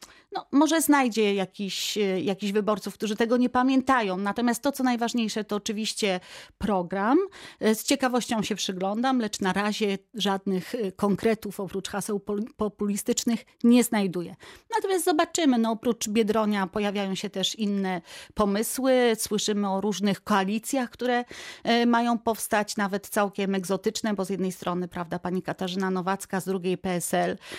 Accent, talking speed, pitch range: native, 135 wpm, 195-225 Hz